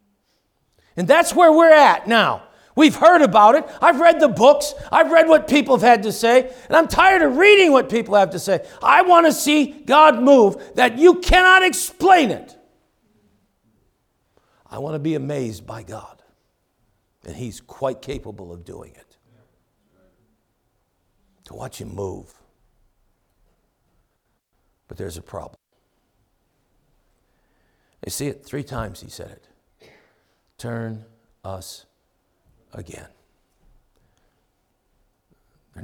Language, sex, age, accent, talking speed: English, male, 60-79, American, 130 wpm